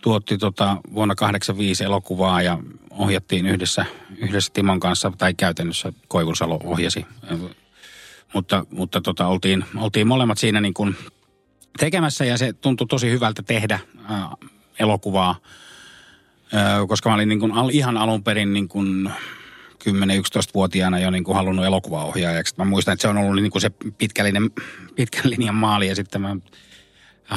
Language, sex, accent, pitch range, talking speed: Finnish, male, native, 95-110 Hz, 145 wpm